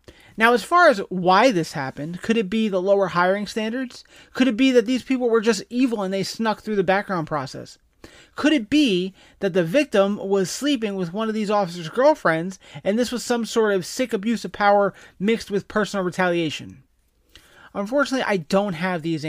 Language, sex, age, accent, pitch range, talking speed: English, male, 30-49, American, 165-230 Hz, 195 wpm